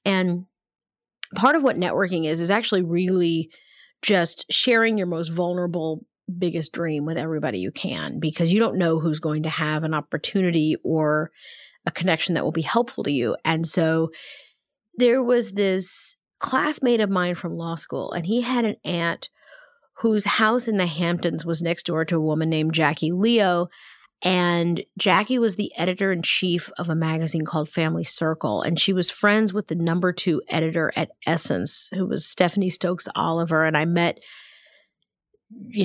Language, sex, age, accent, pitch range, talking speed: English, female, 30-49, American, 160-200 Hz, 165 wpm